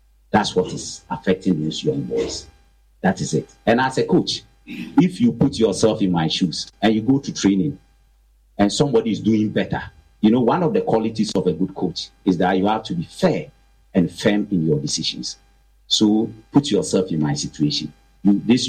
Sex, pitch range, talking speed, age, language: male, 90-140 Hz, 195 wpm, 50-69, English